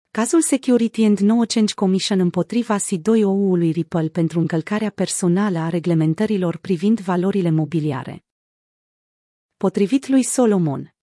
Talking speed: 115 wpm